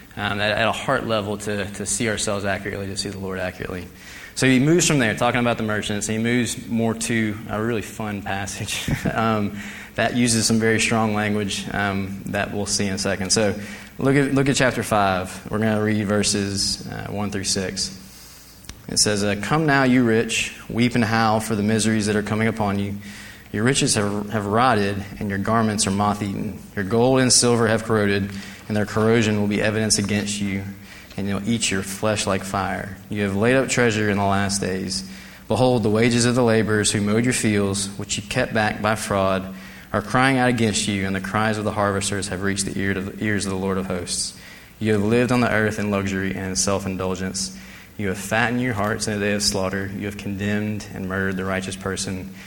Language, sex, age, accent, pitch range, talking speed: English, male, 20-39, American, 100-110 Hz, 210 wpm